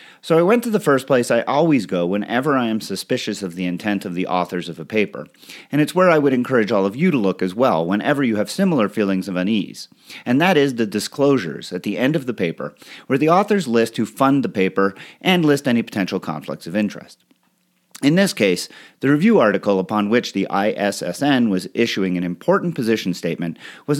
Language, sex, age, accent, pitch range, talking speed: English, male, 40-59, American, 95-155 Hz, 215 wpm